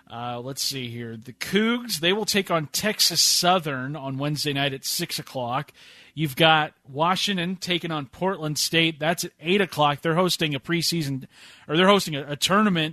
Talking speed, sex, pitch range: 180 wpm, male, 135-170 Hz